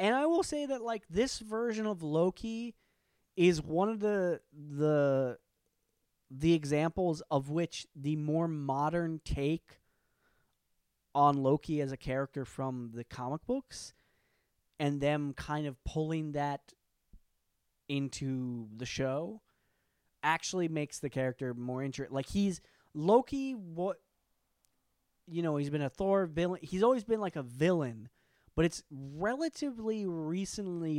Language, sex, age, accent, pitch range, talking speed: English, male, 20-39, American, 135-175 Hz, 130 wpm